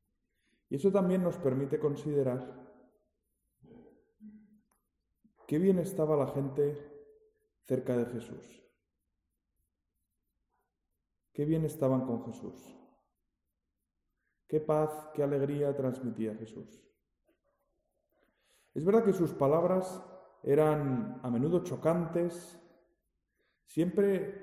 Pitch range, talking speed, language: 130-190 Hz, 85 wpm, Spanish